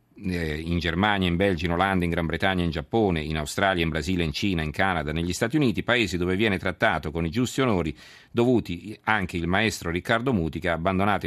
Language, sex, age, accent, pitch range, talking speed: Italian, male, 50-69, native, 80-100 Hz, 210 wpm